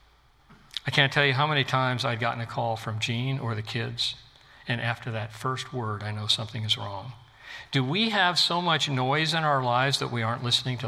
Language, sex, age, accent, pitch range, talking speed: English, male, 60-79, American, 115-145 Hz, 220 wpm